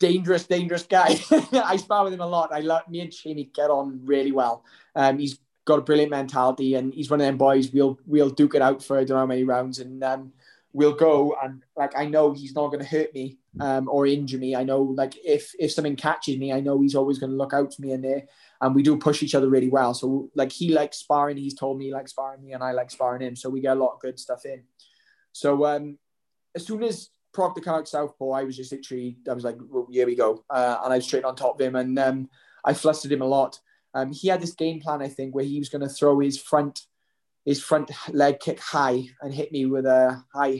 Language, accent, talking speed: English, British, 265 wpm